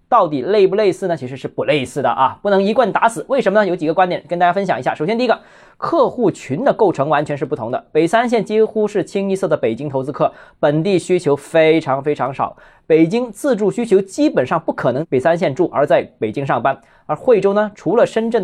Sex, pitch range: male, 155-215 Hz